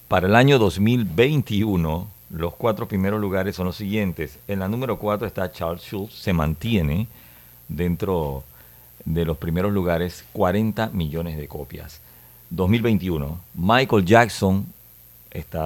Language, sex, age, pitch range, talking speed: Spanish, male, 50-69, 75-105 Hz, 125 wpm